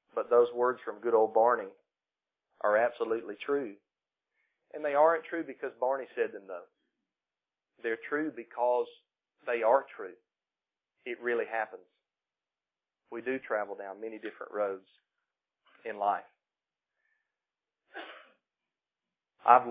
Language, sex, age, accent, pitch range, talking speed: English, male, 40-59, American, 115-150 Hz, 115 wpm